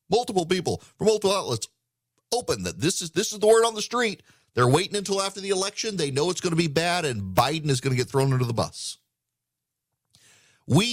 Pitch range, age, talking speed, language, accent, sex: 105-140 Hz, 40-59, 220 wpm, English, American, male